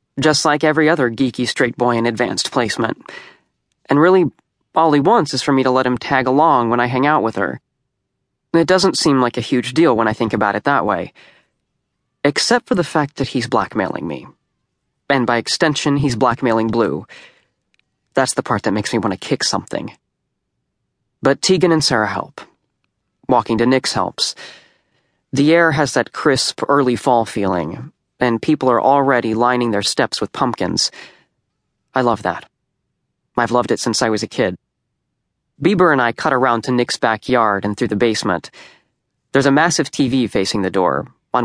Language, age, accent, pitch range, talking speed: English, 30-49, American, 110-145 Hz, 180 wpm